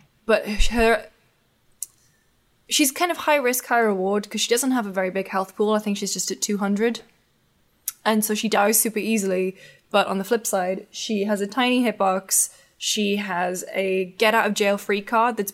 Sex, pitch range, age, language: female, 195-235 Hz, 10-29, English